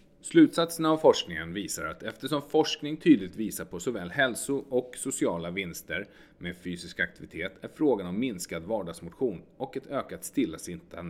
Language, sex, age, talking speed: Swedish, male, 30-49, 145 wpm